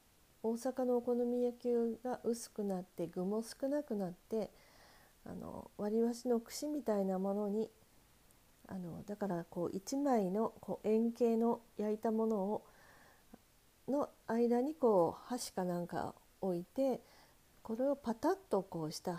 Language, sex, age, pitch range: Japanese, female, 40-59, 190-245 Hz